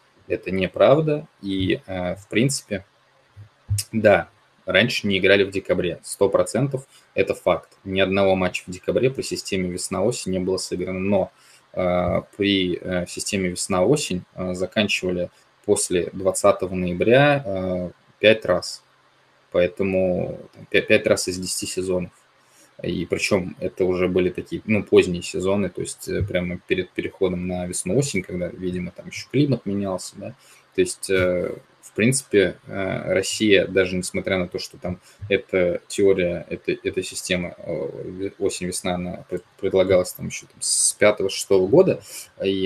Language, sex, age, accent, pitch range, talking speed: Russian, male, 20-39, native, 90-100 Hz, 135 wpm